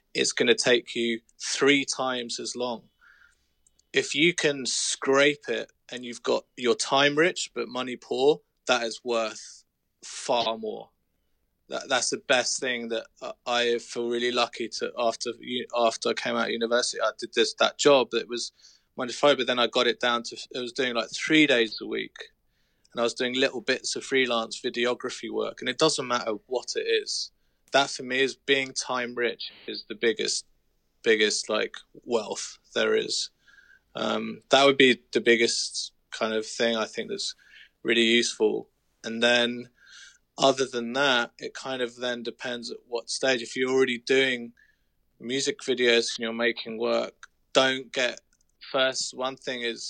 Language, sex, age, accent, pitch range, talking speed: English, male, 20-39, British, 115-135 Hz, 175 wpm